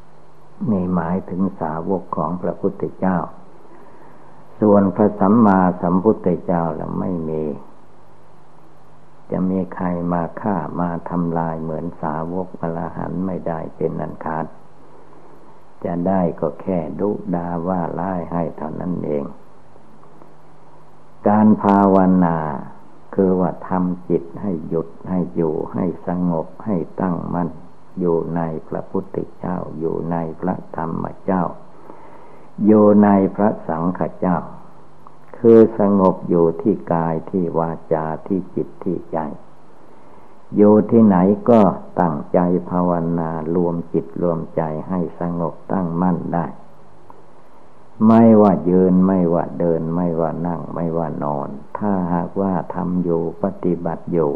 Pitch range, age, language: 85-95 Hz, 60-79, Thai